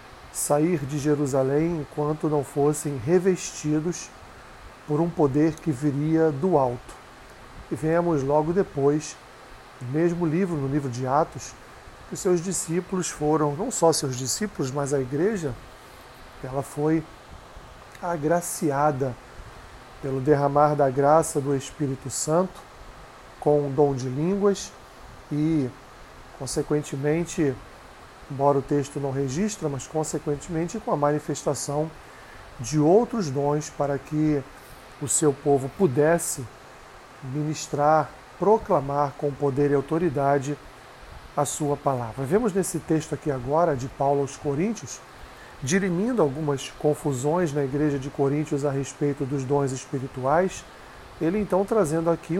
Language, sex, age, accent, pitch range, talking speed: Portuguese, male, 40-59, Brazilian, 140-165 Hz, 120 wpm